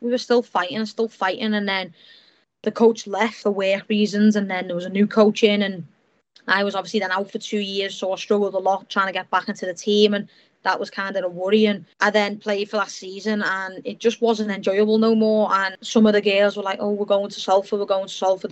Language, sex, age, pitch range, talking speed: English, female, 20-39, 195-220 Hz, 260 wpm